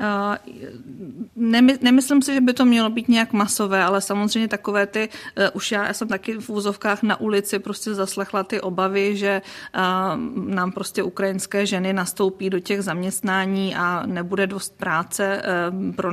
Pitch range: 190-205 Hz